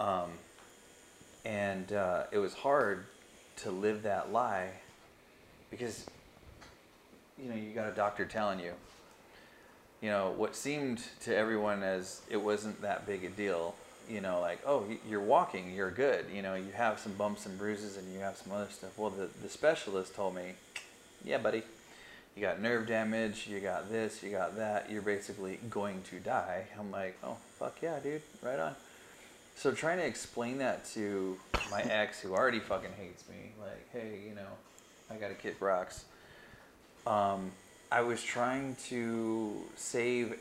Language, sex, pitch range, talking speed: English, male, 95-110 Hz, 170 wpm